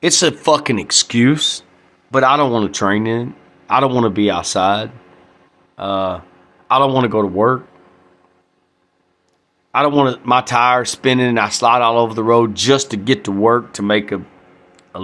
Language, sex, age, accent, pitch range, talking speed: English, male, 30-49, American, 90-145 Hz, 190 wpm